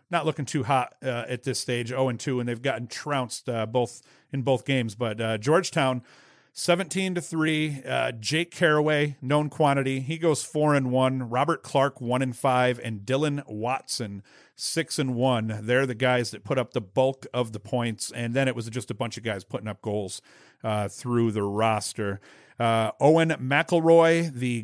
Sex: male